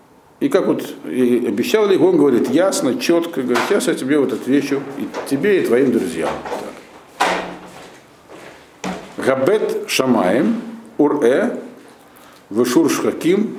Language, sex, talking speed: Russian, male, 115 wpm